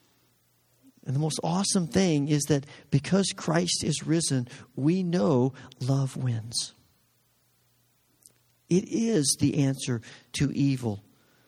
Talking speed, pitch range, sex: 110 wpm, 125-170 Hz, male